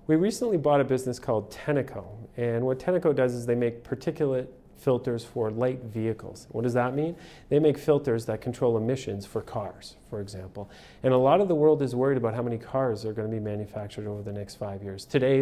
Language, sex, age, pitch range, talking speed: English, male, 40-59, 110-130 Hz, 220 wpm